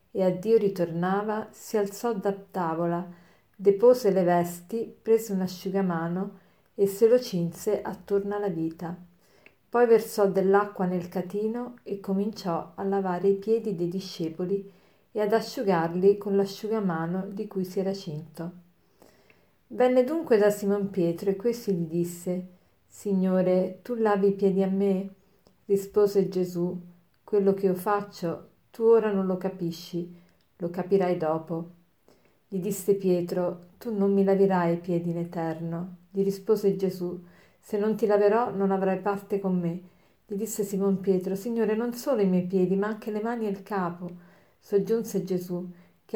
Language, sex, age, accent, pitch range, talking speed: Italian, female, 50-69, native, 180-205 Hz, 150 wpm